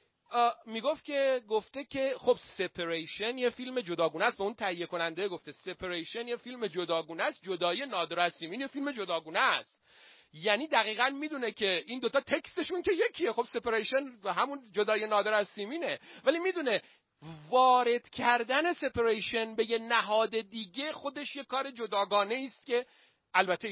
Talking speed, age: 160 wpm, 40-59